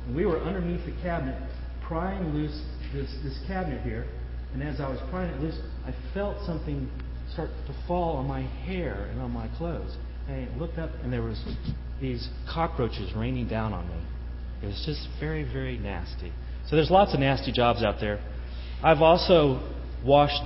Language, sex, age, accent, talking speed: English, male, 40-59, American, 180 wpm